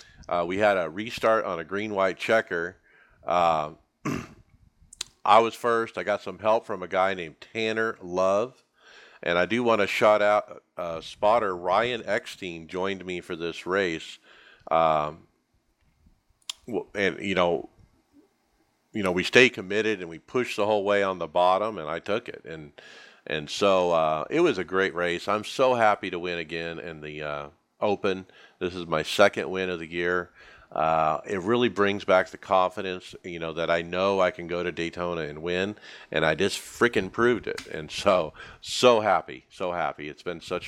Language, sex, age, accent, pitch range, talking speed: English, male, 50-69, American, 85-110 Hz, 180 wpm